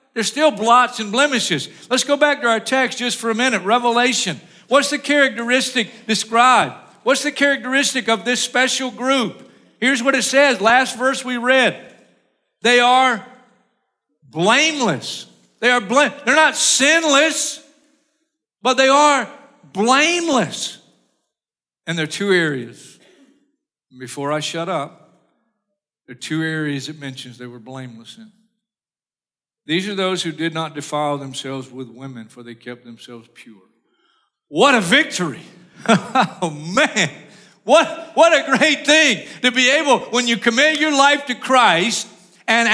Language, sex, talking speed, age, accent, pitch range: English, male, 140 wpm, 50-69, American, 160-265 Hz